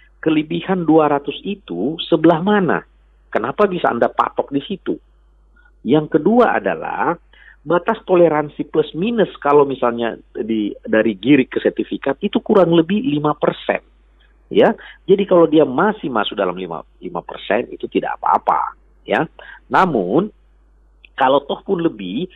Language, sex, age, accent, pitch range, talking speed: Indonesian, male, 50-69, native, 120-180 Hz, 125 wpm